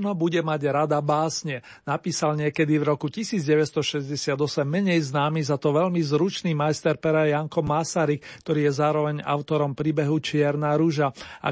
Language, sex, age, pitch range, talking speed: Slovak, male, 40-59, 150-180 Hz, 145 wpm